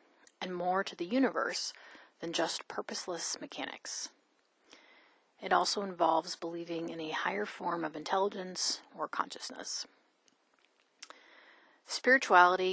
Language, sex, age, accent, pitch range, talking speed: English, female, 30-49, American, 170-215 Hz, 105 wpm